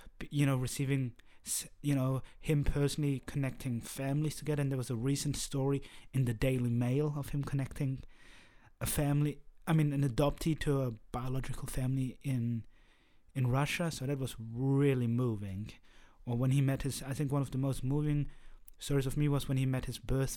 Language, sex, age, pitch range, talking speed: English, male, 30-49, 125-145 Hz, 185 wpm